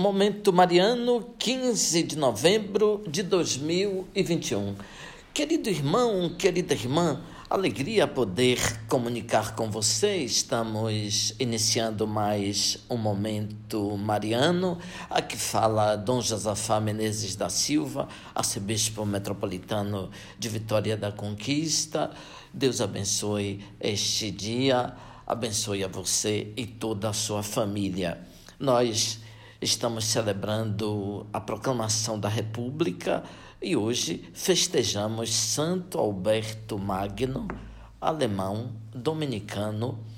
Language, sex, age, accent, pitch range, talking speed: Portuguese, male, 60-79, Brazilian, 105-140 Hz, 95 wpm